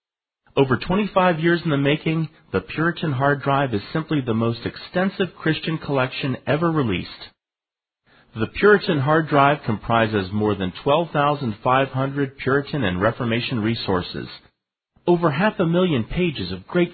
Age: 40-59